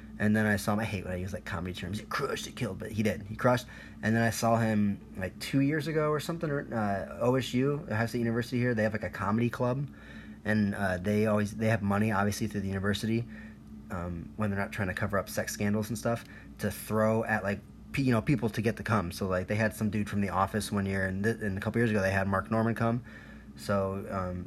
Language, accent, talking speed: English, American, 250 wpm